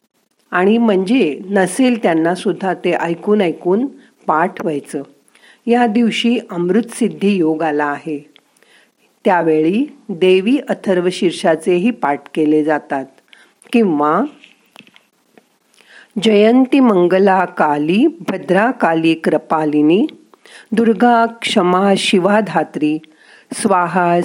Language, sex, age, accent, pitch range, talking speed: Marathi, female, 50-69, native, 160-225 Hz, 80 wpm